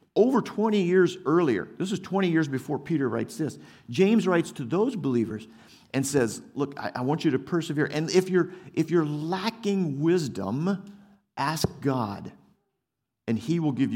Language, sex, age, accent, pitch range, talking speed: English, male, 50-69, American, 115-170 Hz, 160 wpm